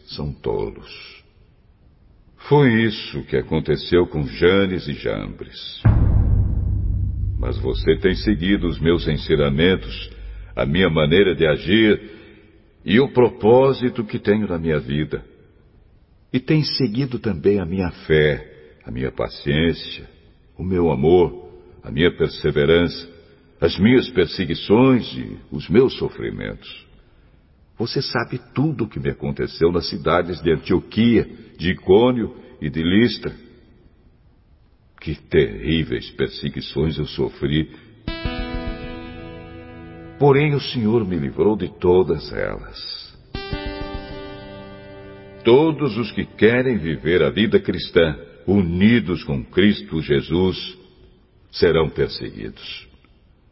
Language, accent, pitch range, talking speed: Portuguese, Brazilian, 80-110 Hz, 110 wpm